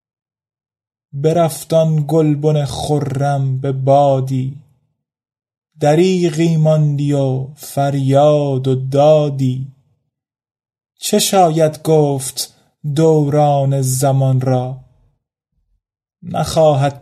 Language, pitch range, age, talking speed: Persian, 130-155 Hz, 30-49, 65 wpm